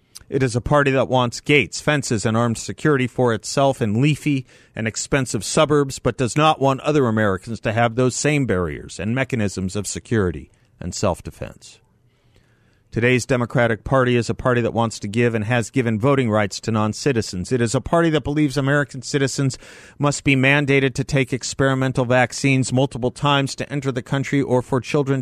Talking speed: 180 wpm